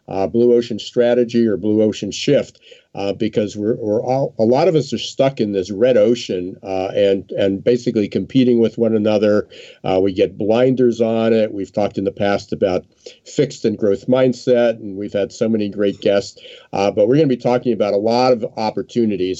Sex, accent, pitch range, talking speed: male, American, 100-125 Hz, 205 wpm